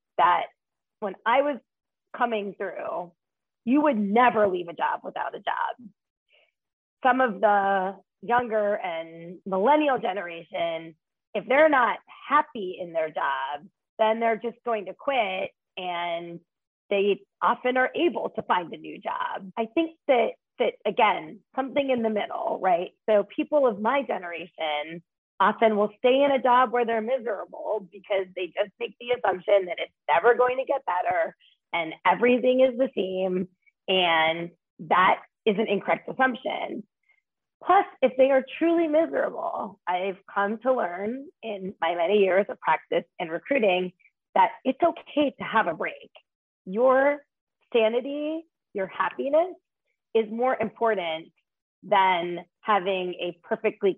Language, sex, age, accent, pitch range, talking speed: English, female, 30-49, American, 190-260 Hz, 145 wpm